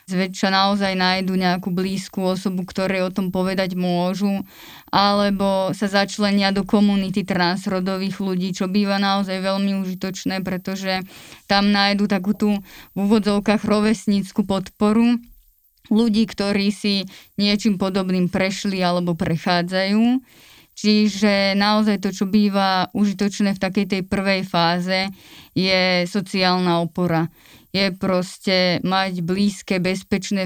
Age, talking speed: 20-39, 115 wpm